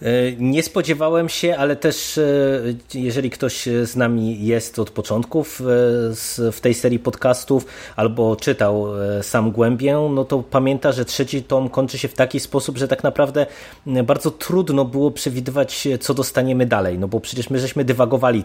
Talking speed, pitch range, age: 155 wpm, 110-130 Hz, 20-39